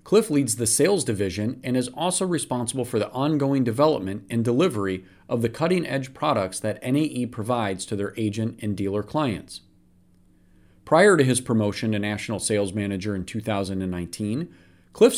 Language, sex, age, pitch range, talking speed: English, male, 40-59, 105-140 Hz, 155 wpm